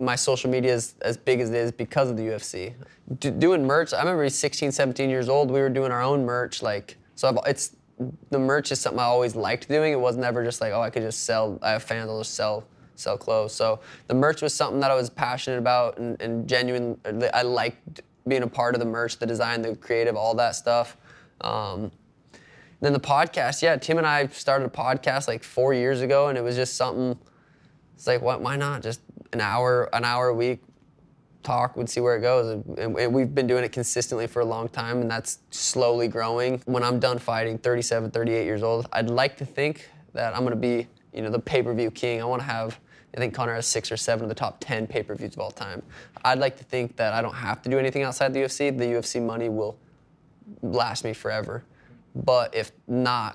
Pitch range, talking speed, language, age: 115-135 Hz, 235 wpm, English, 20-39